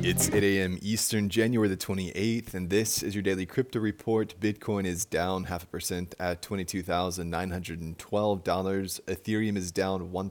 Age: 20-39